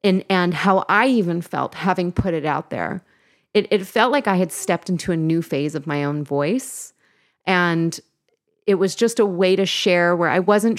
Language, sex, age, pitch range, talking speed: English, female, 30-49, 155-185 Hz, 205 wpm